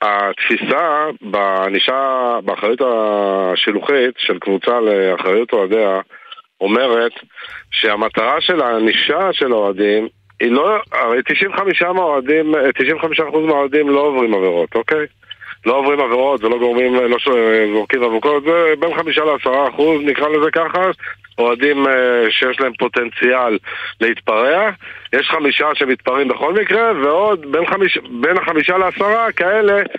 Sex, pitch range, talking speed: male, 125-180 Hz, 110 wpm